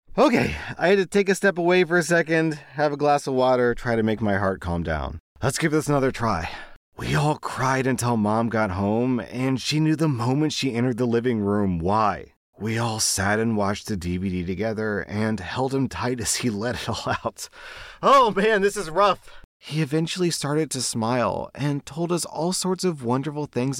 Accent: American